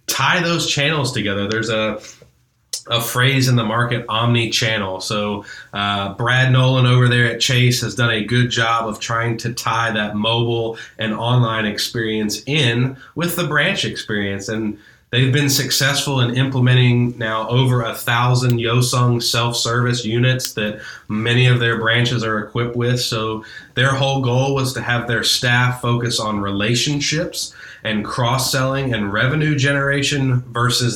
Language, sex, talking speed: English, male, 150 wpm